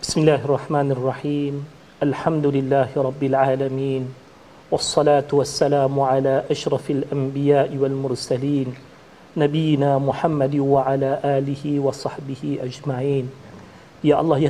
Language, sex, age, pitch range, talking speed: Malayalam, male, 40-59, 145-175 Hz, 45 wpm